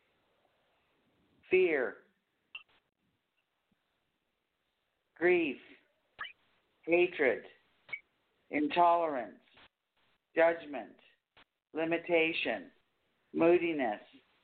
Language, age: English, 50-69